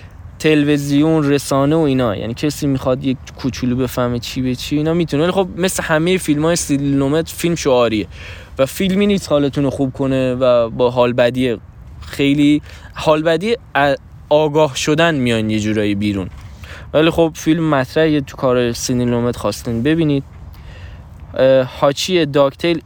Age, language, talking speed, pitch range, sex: 20-39, Persian, 140 wpm, 115-155 Hz, male